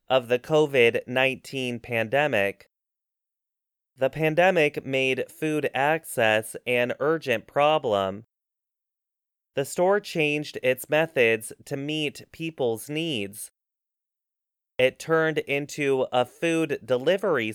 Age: 20-39